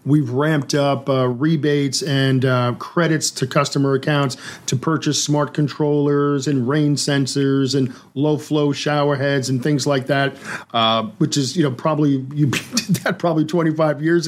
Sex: male